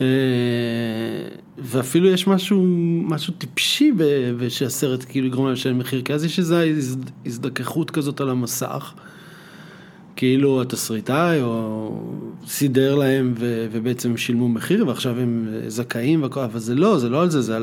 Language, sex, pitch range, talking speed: Hebrew, male, 125-165 Hz, 145 wpm